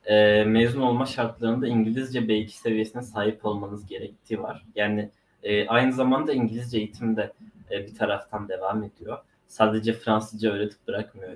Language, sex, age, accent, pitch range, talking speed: Turkish, male, 20-39, native, 110-130 Hz, 125 wpm